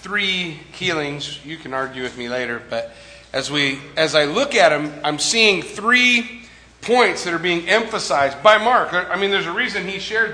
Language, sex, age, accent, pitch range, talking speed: English, male, 40-59, American, 165-215 Hz, 190 wpm